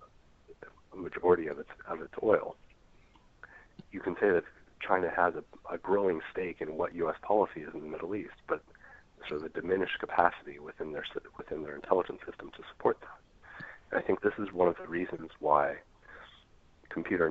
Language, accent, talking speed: English, American, 175 wpm